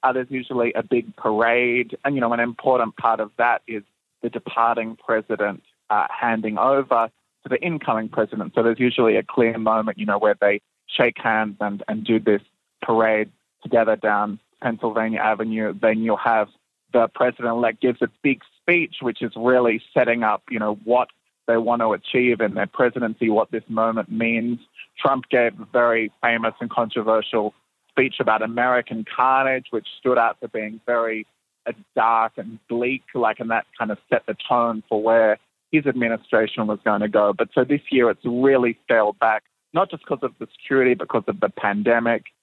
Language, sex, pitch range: English, male, 110-125 Hz